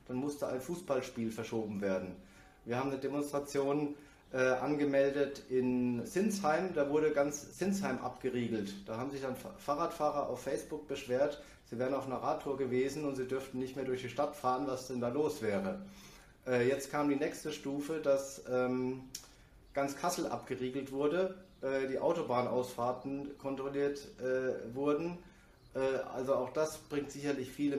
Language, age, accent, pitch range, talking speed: German, 30-49, German, 125-145 Hz, 155 wpm